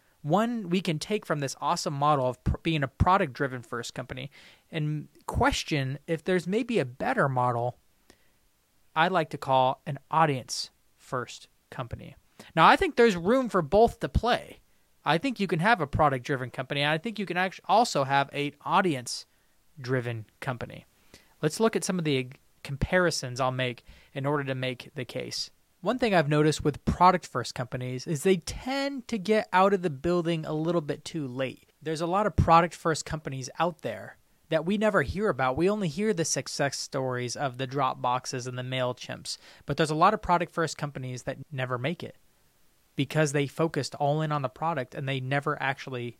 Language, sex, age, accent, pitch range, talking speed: English, male, 20-39, American, 130-170 Hz, 180 wpm